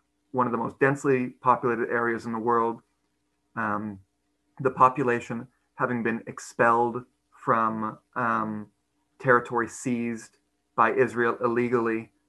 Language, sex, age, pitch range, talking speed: English, male, 30-49, 115-135 Hz, 110 wpm